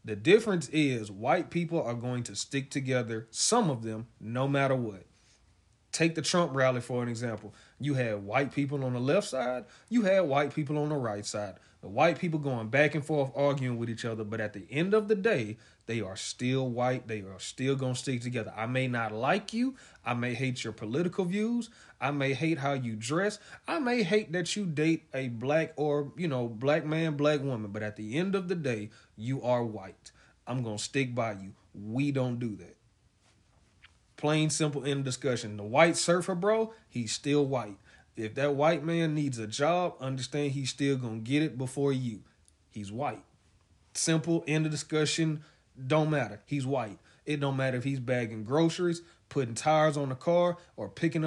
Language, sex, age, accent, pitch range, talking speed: English, male, 30-49, American, 115-155 Hz, 200 wpm